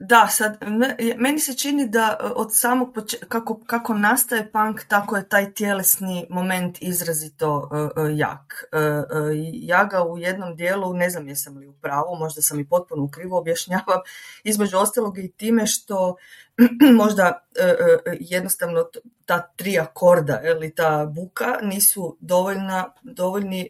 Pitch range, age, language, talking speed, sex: 170-205 Hz, 30-49, Croatian, 150 wpm, female